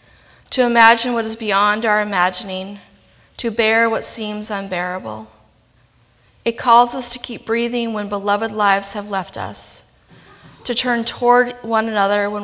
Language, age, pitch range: English, 30-49, 195-230 Hz